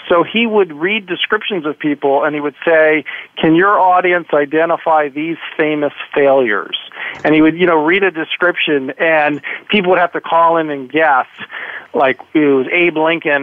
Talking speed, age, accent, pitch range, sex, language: 180 wpm, 40-59, American, 145-180 Hz, male, English